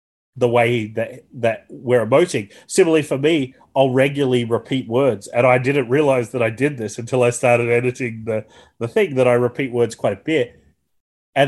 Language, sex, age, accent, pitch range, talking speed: English, male, 30-49, Australian, 120-140 Hz, 190 wpm